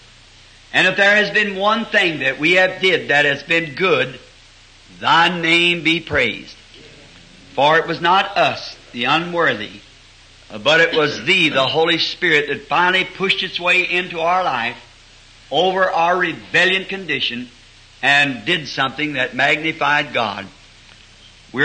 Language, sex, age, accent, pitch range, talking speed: English, male, 60-79, American, 115-175 Hz, 145 wpm